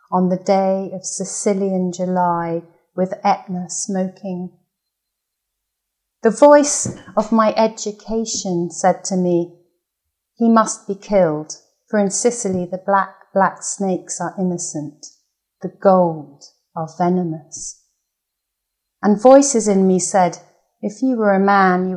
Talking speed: 125 wpm